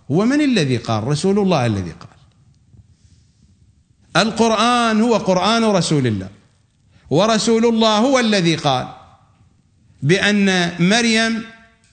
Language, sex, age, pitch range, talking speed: English, male, 50-69, 120-205 Hz, 95 wpm